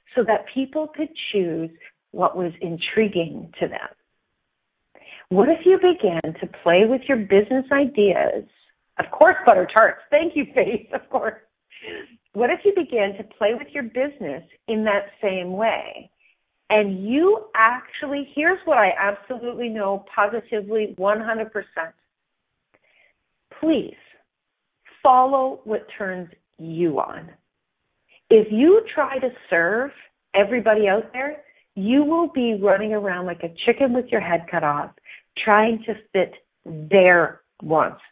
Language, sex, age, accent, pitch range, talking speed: English, female, 40-59, American, 180-255 Hz, 130 wpm